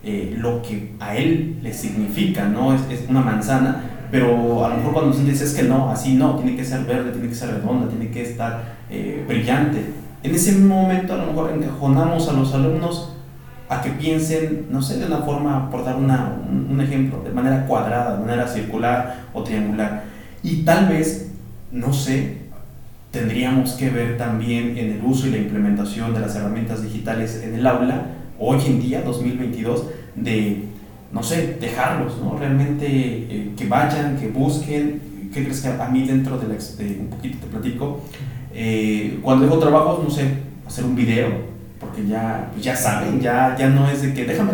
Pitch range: 115-145 Hz